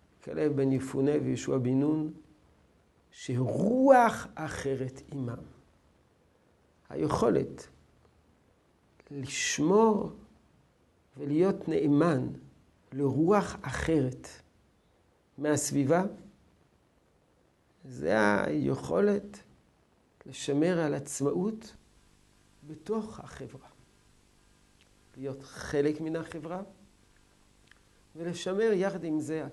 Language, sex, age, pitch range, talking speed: Hebrew, male, 50-69, 110-165 Hz, 65 wpm